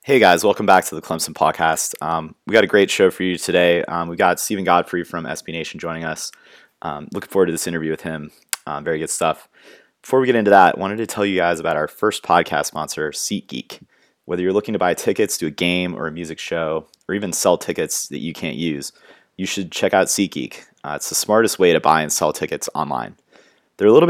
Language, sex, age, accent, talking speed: English, male, 30-49, American, 240 wpm